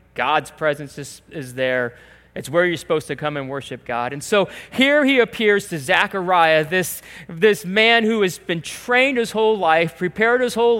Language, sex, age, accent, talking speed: English, male, 30-49, American, 190 wpm